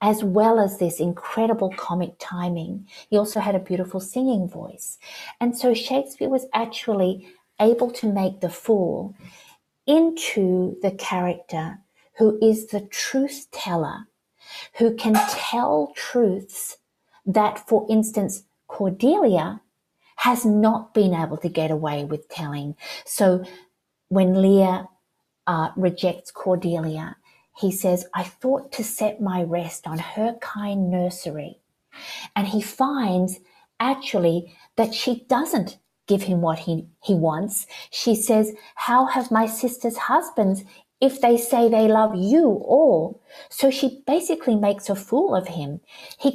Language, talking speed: English, 135 wpm